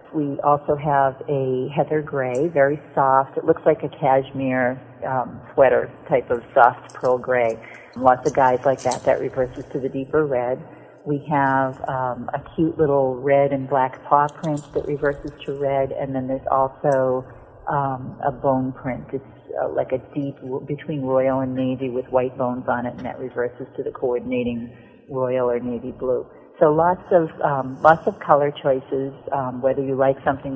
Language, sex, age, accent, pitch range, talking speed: English, female, 50-69, American, 130-140 Hz, 180 wpm